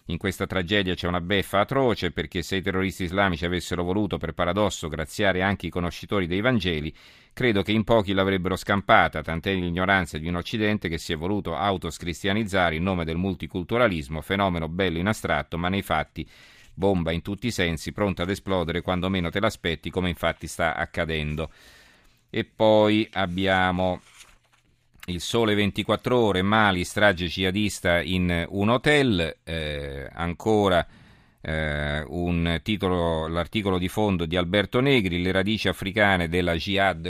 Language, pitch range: Italian, 85-100 Hz